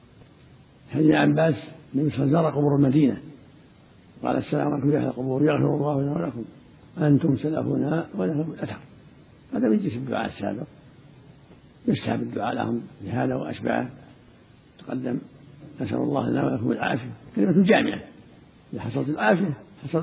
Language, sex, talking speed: Arabic, male, 120 wpm